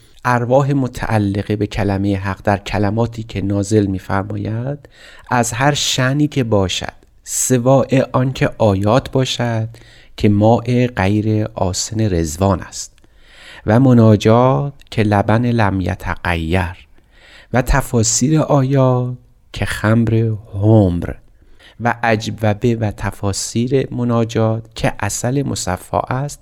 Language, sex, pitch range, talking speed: Persian, male, 100-120 Hz, 105 wpm